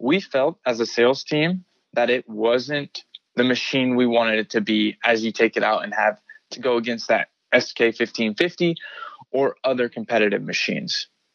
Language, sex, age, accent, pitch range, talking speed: English, male, 20-39, American, 120-160 Hz, 170 wpm